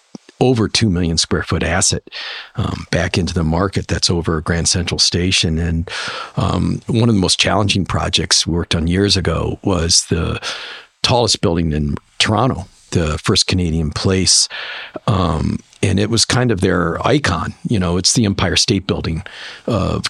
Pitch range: 85-105 Hz